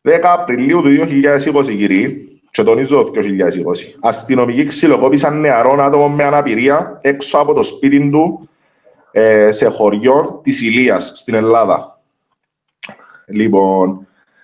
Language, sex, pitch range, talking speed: Greek, male, 110-145 Hz, 110 wpm